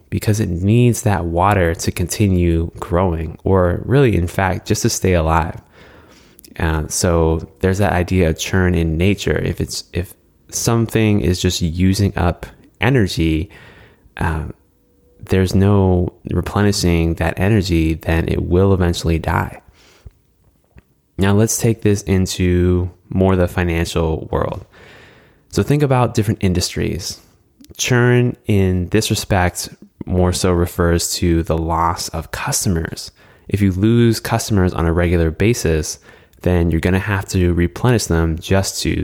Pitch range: 85-100 Hz